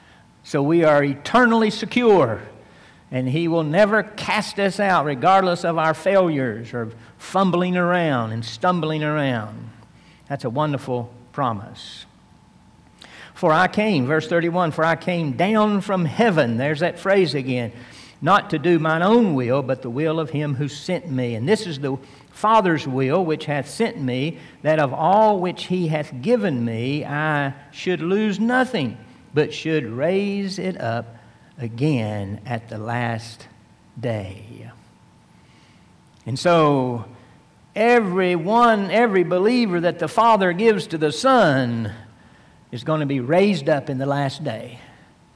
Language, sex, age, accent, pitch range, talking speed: English, male, 60-79, American, 125-180 Hz, 145 wpm